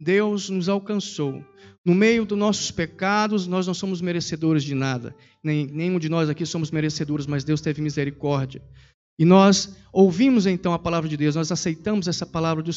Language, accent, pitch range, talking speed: Portuguese, Brazilian, 155-200 Hz, 180 wpm